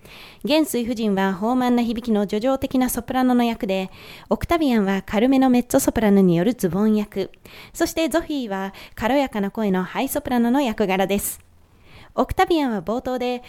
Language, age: Japanese, 20-39